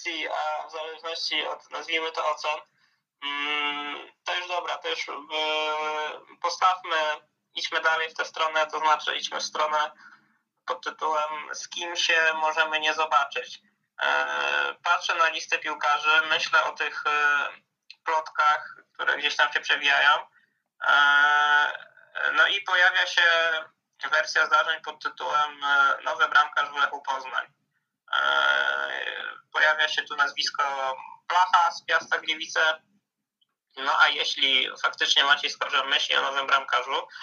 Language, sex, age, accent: Polish, male, 20-39, native